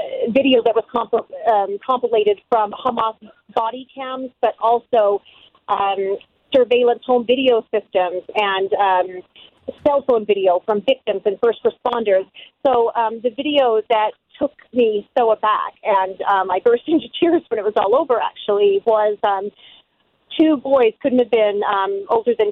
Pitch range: 210-255 Hz